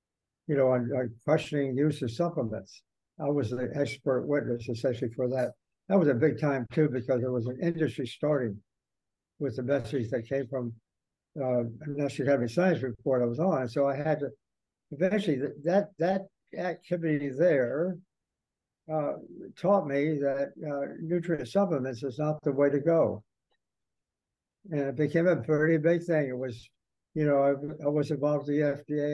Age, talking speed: 60-79, 170 wpm